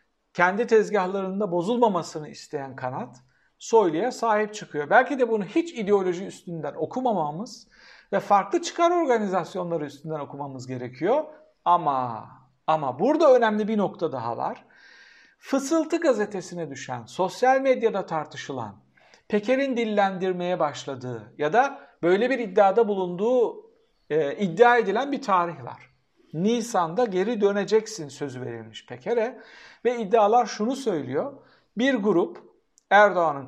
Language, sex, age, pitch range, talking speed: Turkish, male, 60-79, 165-240 Hz, 115 wpm